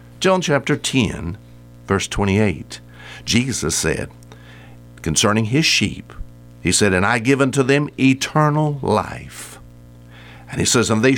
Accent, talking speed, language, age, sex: American, 130 wpm, English, 60-79, male